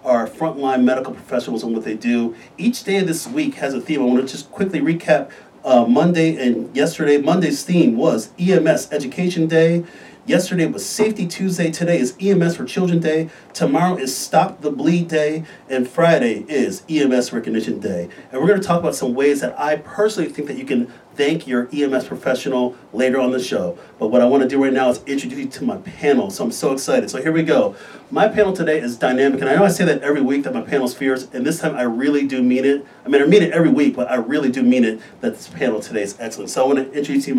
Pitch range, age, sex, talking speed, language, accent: 130-175 Hz, 40-59, male, 240 wpm, English, American